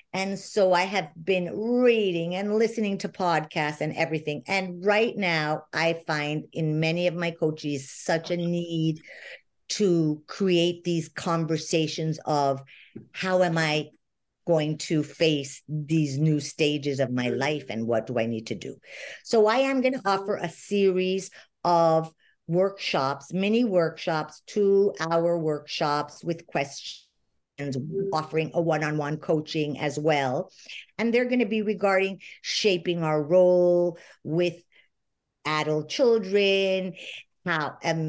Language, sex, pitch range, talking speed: English, female, 155-195 Hz, 135 wpm